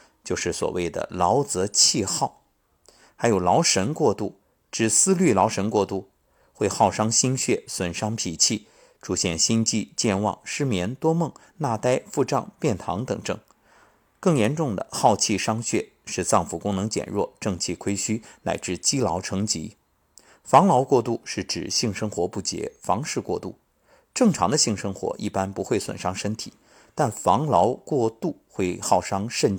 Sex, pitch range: male, 95-130 Hz